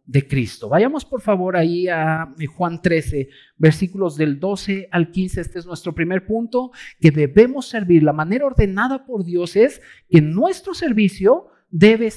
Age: 50-69